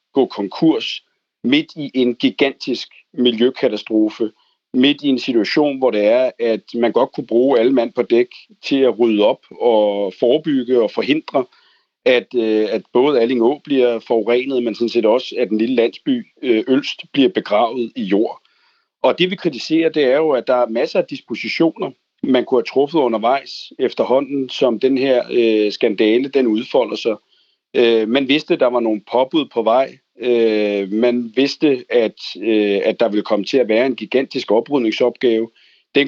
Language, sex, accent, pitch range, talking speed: Danish, male, native, 115-195 Hz, 165 wpm